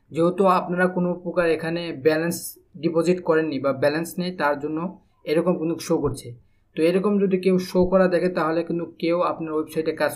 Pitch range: 155-180 Hz